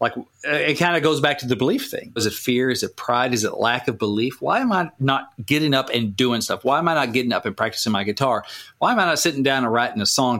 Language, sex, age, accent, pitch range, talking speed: English, male, 40-59, American, 125-165 Hz, 290 wpm